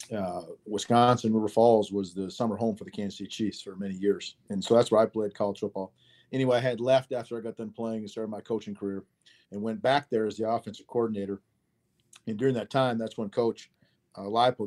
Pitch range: 100-115 Hz